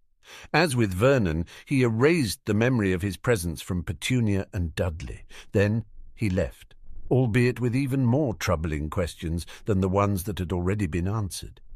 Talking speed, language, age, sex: 160 wpm, English, 50-69, male